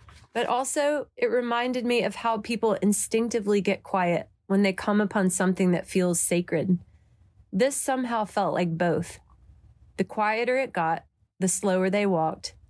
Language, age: English, 30-49